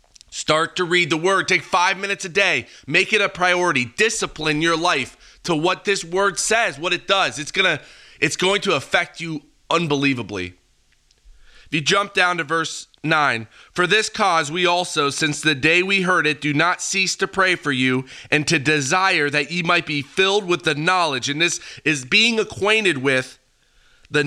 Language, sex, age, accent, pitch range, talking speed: English, male, 30-49, American, 150-190 Hz, 190 wpm